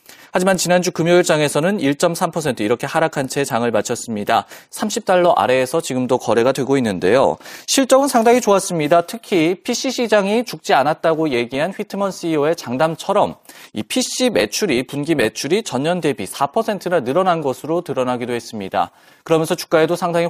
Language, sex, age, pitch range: Korean, male, 30-49, 140-195 Hz